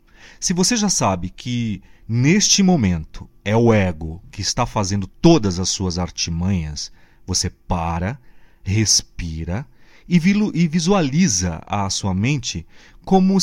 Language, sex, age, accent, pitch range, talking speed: Portuguese, male, 40-59, Brazilian, 100-155 Hz, 115 wpm